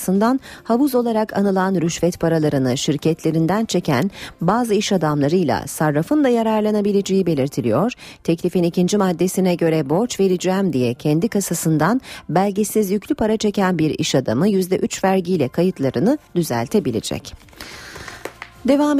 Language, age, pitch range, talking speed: Turkish, 40-59, 155-220 Hz, 110 wpm